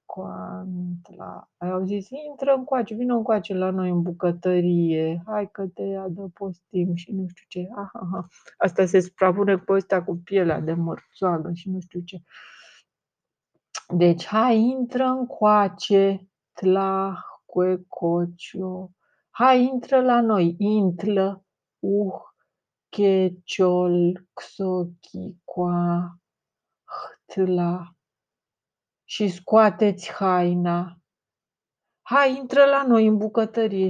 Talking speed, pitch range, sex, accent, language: 110 wpm, 175-205 Hz, female, native, Romanian